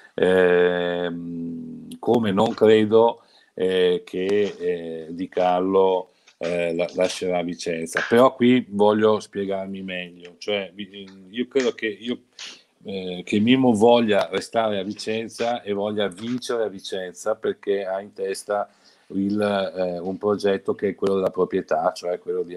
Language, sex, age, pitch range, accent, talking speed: Italian, male, 50-69, 90-105 Hz, native, 135 wpm